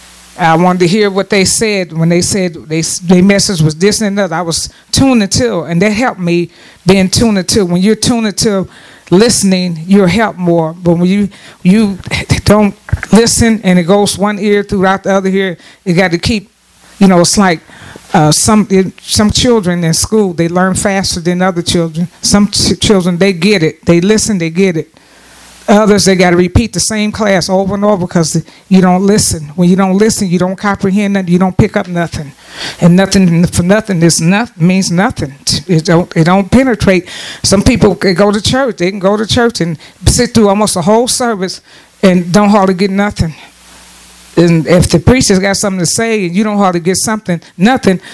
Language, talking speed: English, 200 wpm